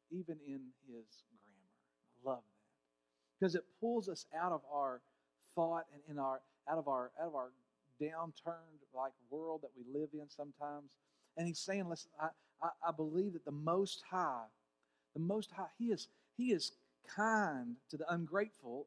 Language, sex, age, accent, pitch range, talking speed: English, male, 40-59, American, 155-235 Hz, 175 wpm